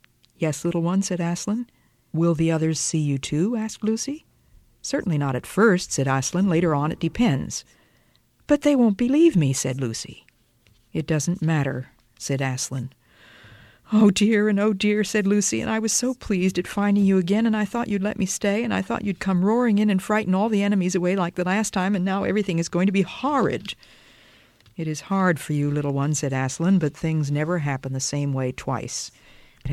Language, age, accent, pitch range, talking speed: English, 50-69, American, 140-195 Hz, 205 wpm